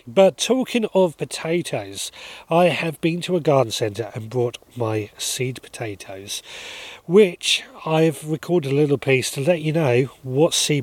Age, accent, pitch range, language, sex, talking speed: 30-49, British, 115-165 Hz, English, male, 155 wpm